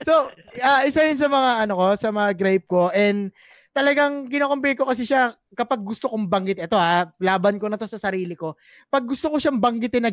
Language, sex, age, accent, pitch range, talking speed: Filipino, male, 20-39, native, 180-235 Hz, 220 wpm